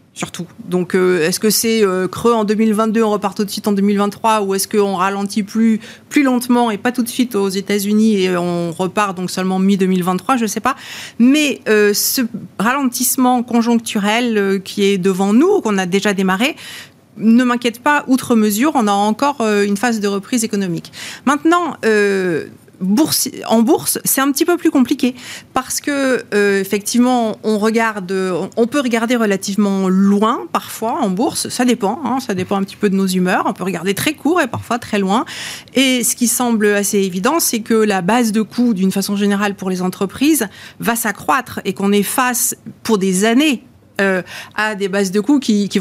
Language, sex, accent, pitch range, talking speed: French, female, French, 195-240 Hz, 195 wpm